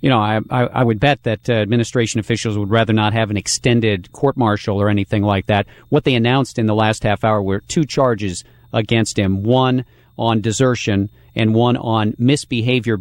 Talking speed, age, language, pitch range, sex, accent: 185 wpm, 40-59, English, 105-125 Hz, male, American